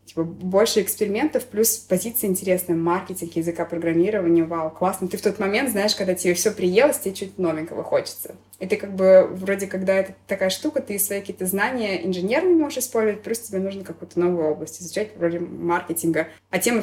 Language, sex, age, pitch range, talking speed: Russian, female, 20-39, 175-215 Hz, 185 wpm